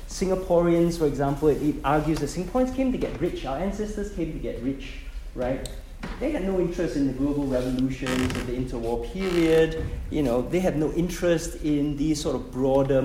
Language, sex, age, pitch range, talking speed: English, male, 20-39, 125-175 Hz, 195 wpm